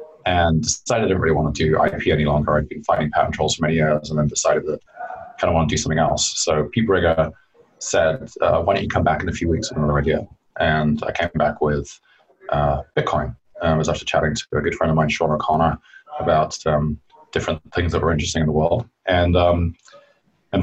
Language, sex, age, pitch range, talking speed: English, male, 20-39, 75-100 Hz, 235 wpm